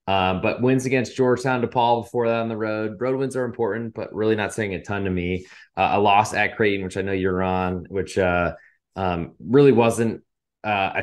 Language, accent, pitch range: English, American, 95-125 Hz